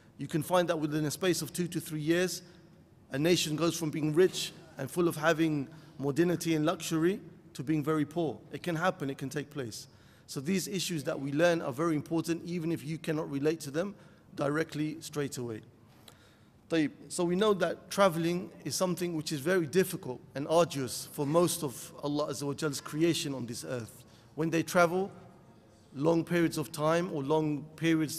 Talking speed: 185 wpm